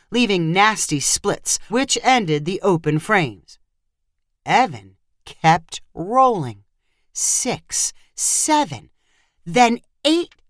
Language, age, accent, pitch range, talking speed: English, 40-59, American, 150-240 Hz, 85 wpm